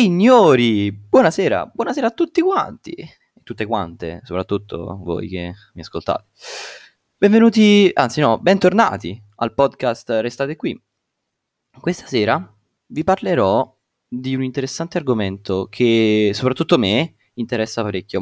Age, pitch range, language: 20-39, 100-140 Hz, Italian